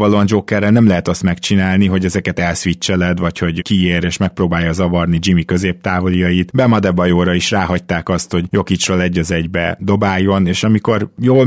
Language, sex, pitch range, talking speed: Hungarian, male, 90-105 Hz, 165 wpm